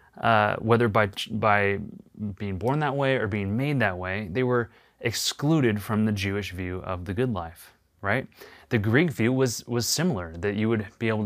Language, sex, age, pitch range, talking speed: English, male, 30-49, 100-120 Hz, 190 wpm